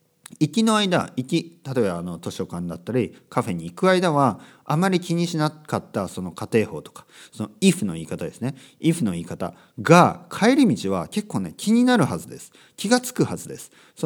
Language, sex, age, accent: Japanese, male, 40-59, native